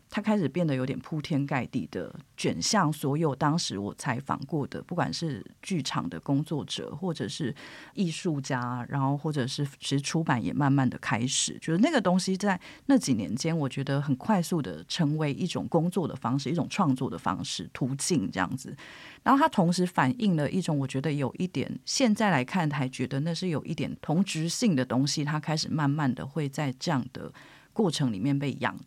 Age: 30-49